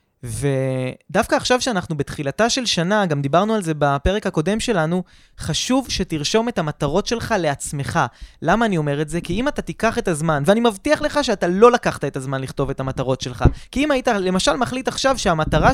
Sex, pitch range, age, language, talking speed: male, 150-220 Hz, 20-39, Hebrew, 185 wpm